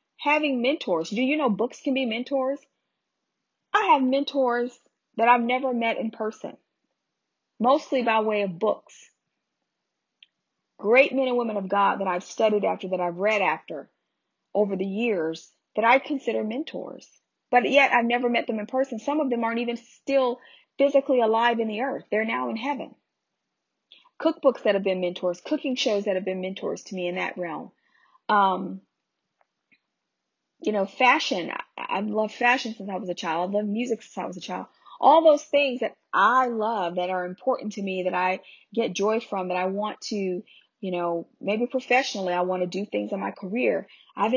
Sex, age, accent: female, 40-59, American